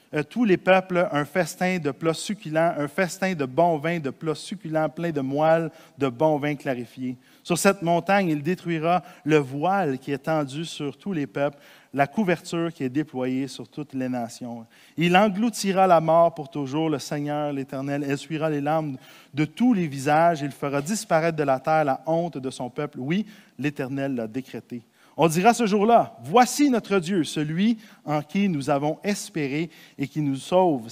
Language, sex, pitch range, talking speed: French, male, 135-175 Hz, 185 wpm